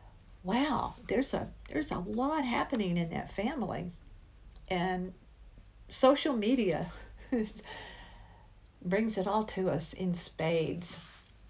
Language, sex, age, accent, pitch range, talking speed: English, female, 50-69, American, 170-215 Hz, 105 wpm